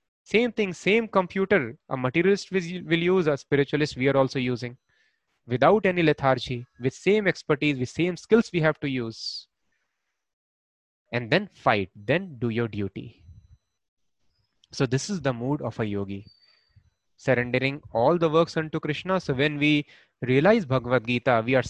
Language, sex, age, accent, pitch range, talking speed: English, male, 20-39, Indian, 125-165 Hz, 155 wpm